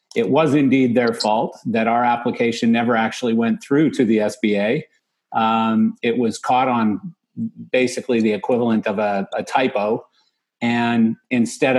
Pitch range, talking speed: 110-130 Hz, 150 wpm